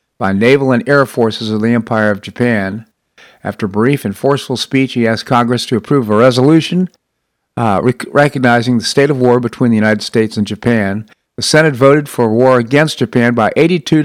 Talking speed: 195 wpm